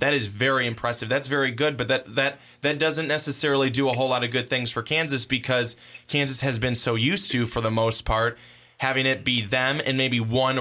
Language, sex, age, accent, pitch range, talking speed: English, male, 20-39, American, 120-140 Hz, 225 wpm